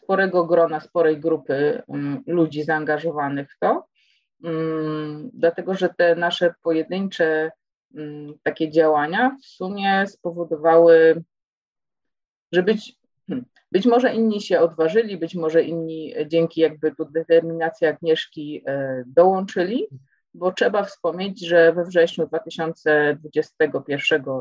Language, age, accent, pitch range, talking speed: Polish, 30-49, native, 150-170 Hz, 100 wpm